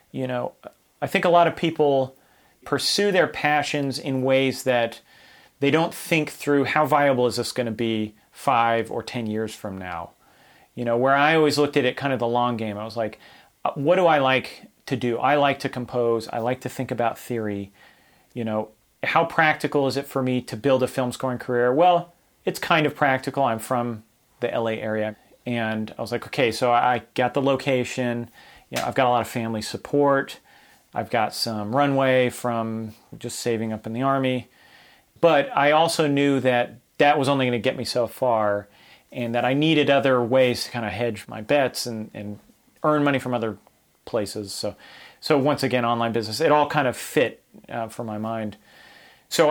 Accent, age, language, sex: American, 40-59, English, male